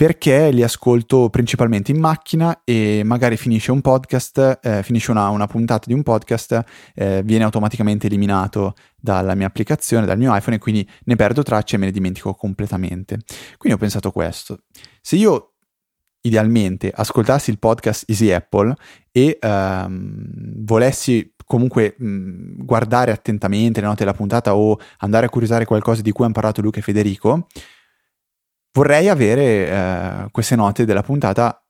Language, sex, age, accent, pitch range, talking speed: Italian, male, 20-39, native, 100-125 Hz, 155 wpm